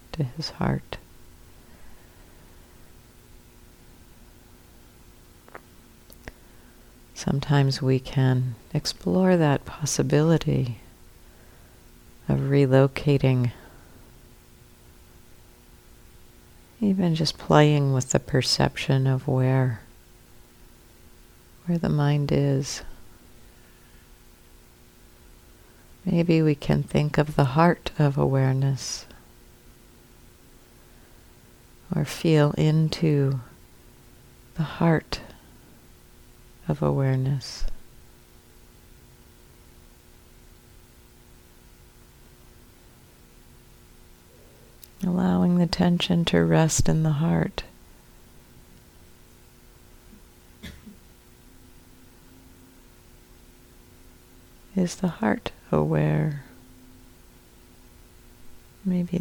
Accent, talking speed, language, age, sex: American, 55 wpm, English, 50-69, female